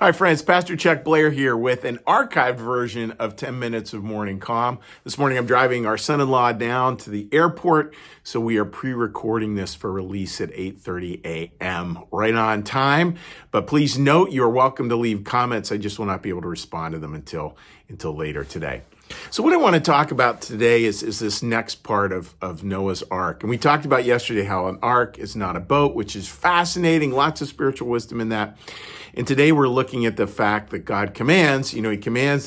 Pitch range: 95-130 Hz